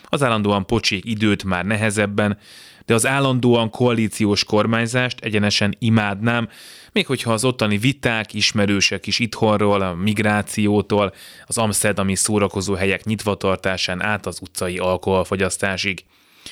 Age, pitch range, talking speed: 20-39, 100-115 Hz, 115 wpm